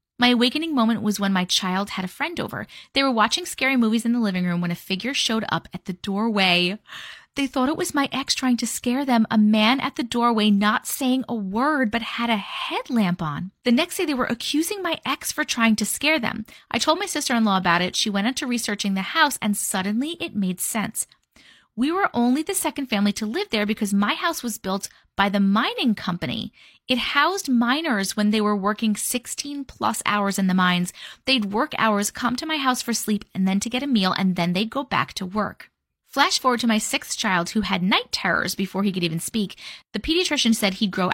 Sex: female